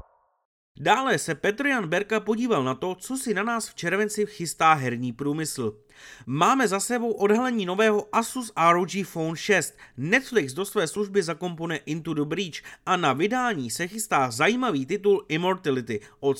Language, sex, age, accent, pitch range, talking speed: Czech, male, 30-49, native, 140-210 Hz, 155 wpm